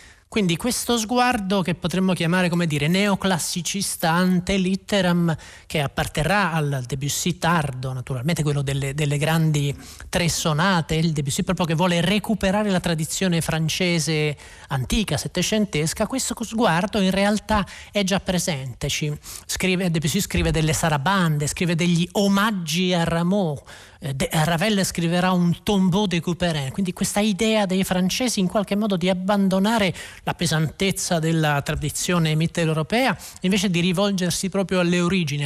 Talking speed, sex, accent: 130 wpm, male, native